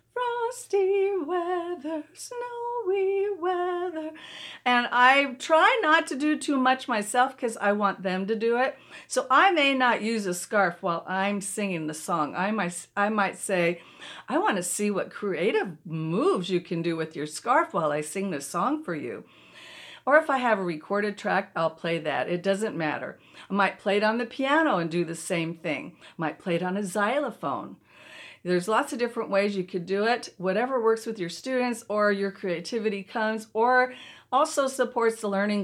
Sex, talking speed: female, 190 wpm